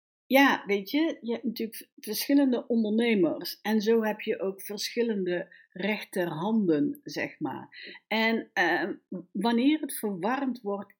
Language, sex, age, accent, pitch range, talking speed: Dutch, female, 60-79, Dutch, 175-235 Hz, 125 wpm